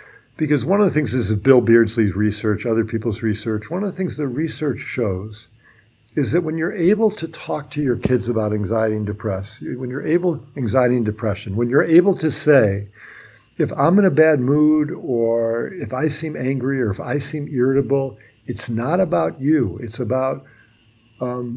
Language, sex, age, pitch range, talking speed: English, male, 50-69, 110-150 Hz, 190 wpm